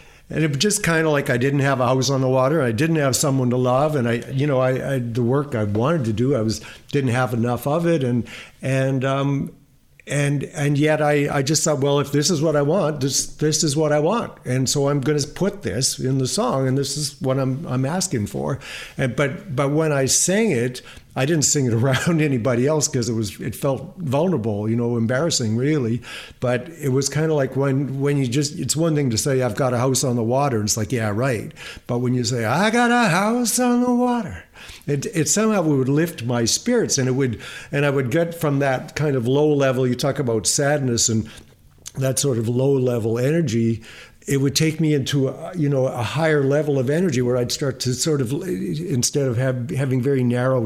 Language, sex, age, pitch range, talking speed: English, male, 60-79, 125-155 Hz, 235 wpm